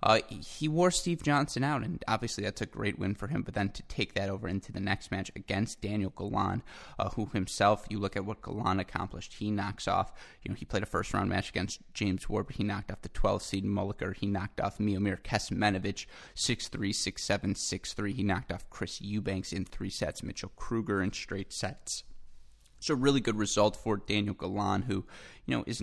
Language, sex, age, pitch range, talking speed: English, male, 20-39, 95-105 Hz, 210 wpm